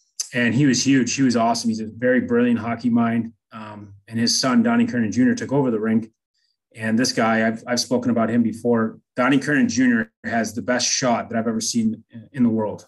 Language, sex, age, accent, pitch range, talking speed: English, male, 30-49, American, 115-150 Hz, 220 wpm